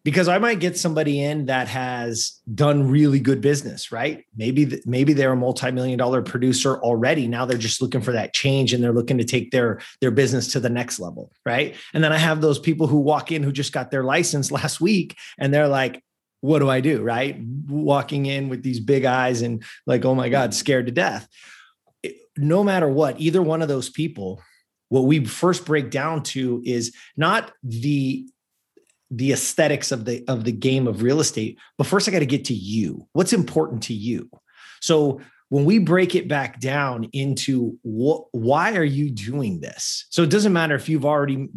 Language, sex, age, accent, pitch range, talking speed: English, male, 30-49, American, 125-160 Hz, 205 wpm